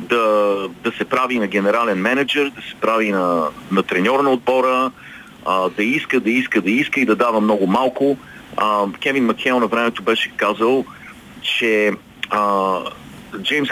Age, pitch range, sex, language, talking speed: 40-59, 105-130 Hz, male, Bulgarian, 160 wpm